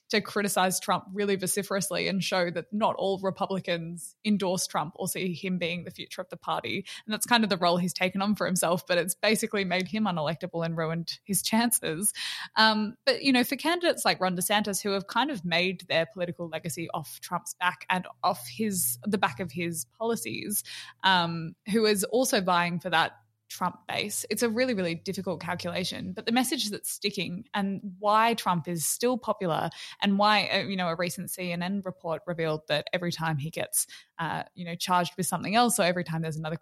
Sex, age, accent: female, 20-39, Australian